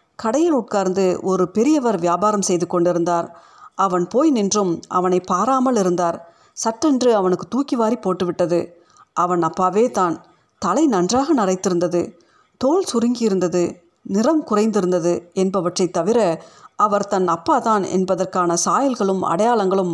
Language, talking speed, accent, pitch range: Tamil, 110 wpm, native, 180-235 Hz